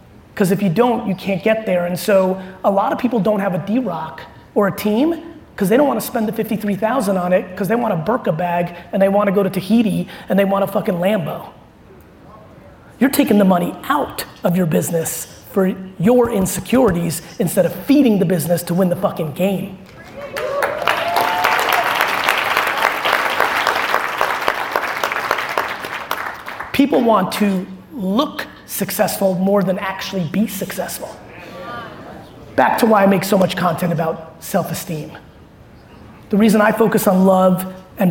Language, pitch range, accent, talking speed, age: English, 180-210 Hz, American, 155 wpm, 30-49